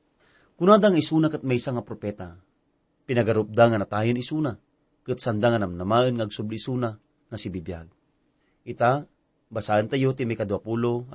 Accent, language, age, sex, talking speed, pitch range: Filipino, English, 40-59, male, 125 wpm, 105-140 Hz